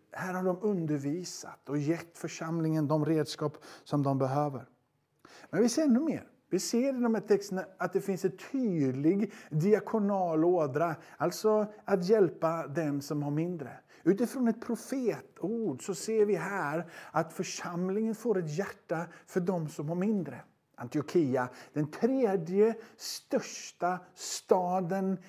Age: 50-69